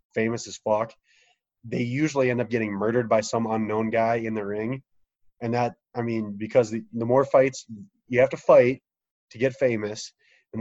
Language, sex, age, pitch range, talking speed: English, male, 20-39, 115-135 Hz, 185 wpm